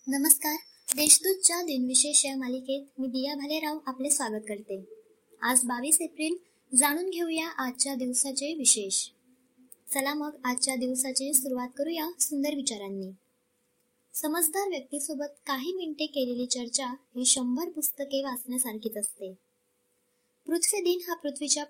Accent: native